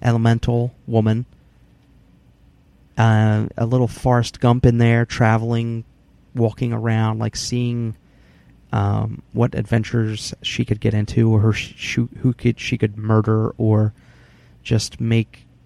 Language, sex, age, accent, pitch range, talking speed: English, male, 30-49, American, 110-125 Hz, 125 wpm